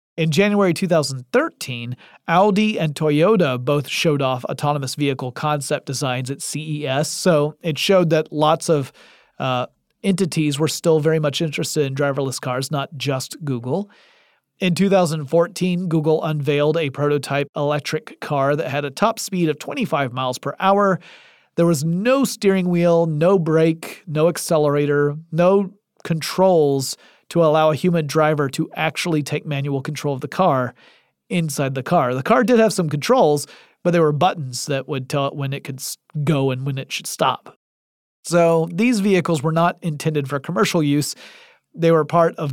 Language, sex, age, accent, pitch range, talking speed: English, male, 40-59, American, 140-170 Hz, 160 wpm